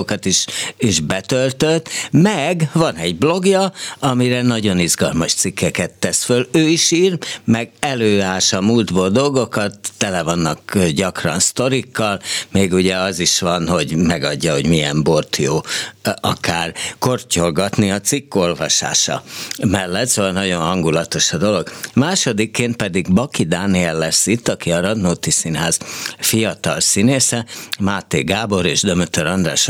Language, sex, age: Hungarian, male, 60-79